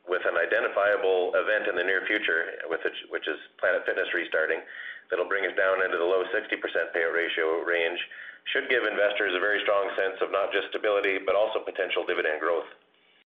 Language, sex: English, male